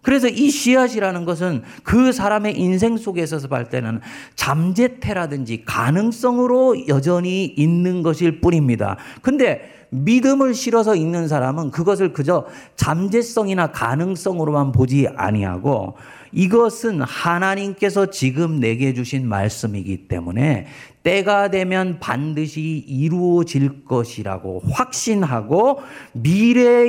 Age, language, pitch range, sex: 40-59, Korean, 135-215 Hz, male